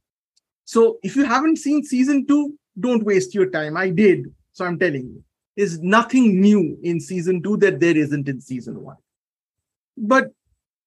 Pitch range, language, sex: 145-190 Hz, English, male